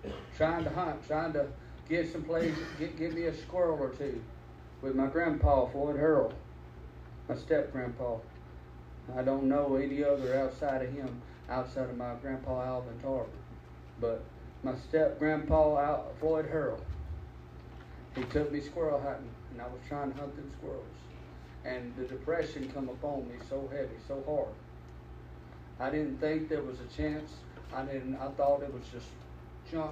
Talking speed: 160 wpm